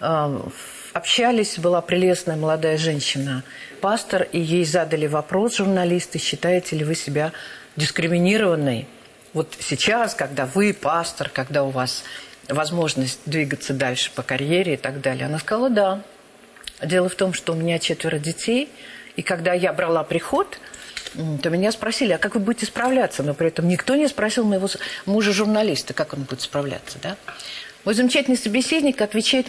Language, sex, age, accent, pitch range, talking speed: Russian, female, 50-69, native, 170-230 Hz, 150 wpm